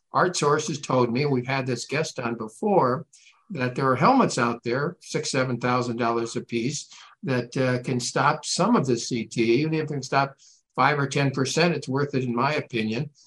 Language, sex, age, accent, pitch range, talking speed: English, male, 60-79, American, 125-150 Hz, 205 wpm